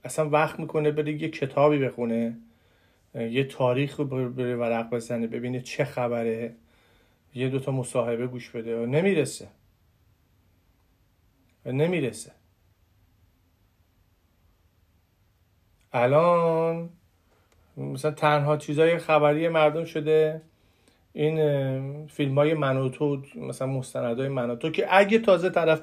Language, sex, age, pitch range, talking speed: Persian, male, 40-59, 115-155 Hz, 95 wpm